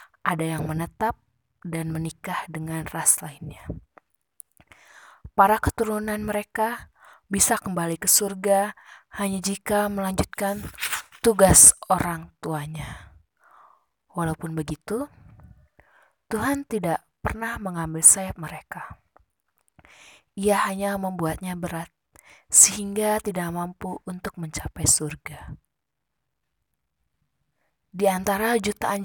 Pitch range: 165-210 Hz